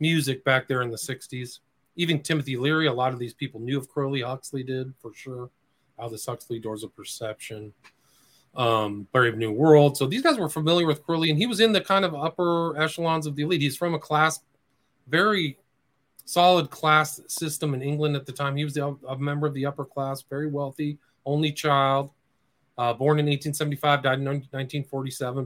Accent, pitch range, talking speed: American, 130-155 Hz, 200 wpm